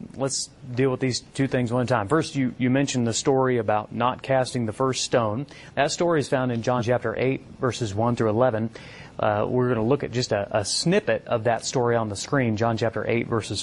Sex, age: male, 30-49